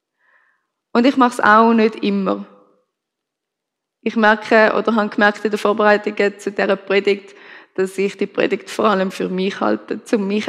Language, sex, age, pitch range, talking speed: German, female, 20-39, 205-245 Hz, 165 wpm